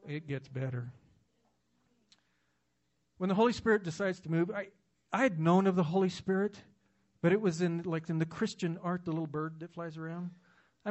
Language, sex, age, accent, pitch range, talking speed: English, male, 50-69, American, 150-205 Hz, 185 wpm